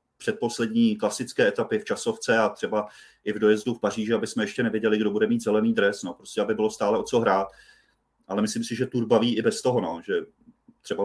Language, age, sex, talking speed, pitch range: Czech, 30-49, male, 225 wpm, 100-115 Hz